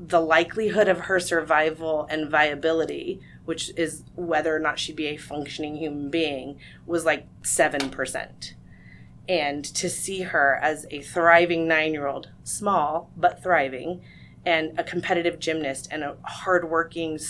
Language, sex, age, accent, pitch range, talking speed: English, female, 30-49, American, 150-170 Hz, 135 wpm